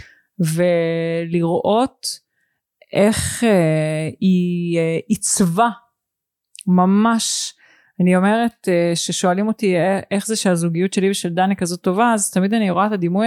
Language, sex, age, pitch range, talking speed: Hebrew, female, 30-49, 180-235 Hz, 120 wpm